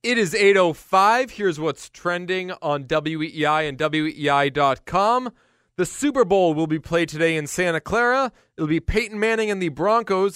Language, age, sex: English, 20-39, male